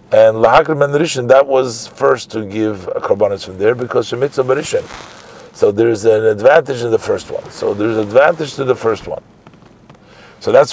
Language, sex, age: English, male, 50-69